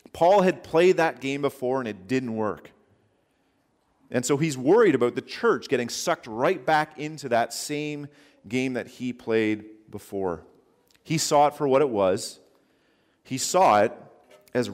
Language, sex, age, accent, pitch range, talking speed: English, male, 40-59, American, 120-155 Hz, 165 wpm